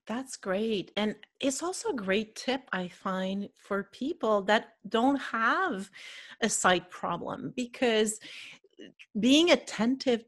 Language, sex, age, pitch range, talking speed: English, female, 40-59, 190-265 Hz, 125 wpm